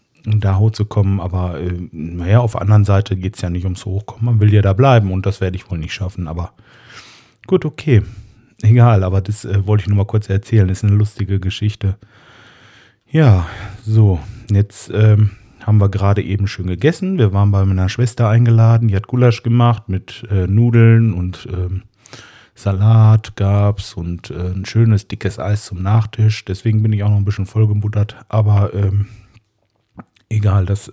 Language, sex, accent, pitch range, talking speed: German, male, German, 95-115 Hz, 180 wpm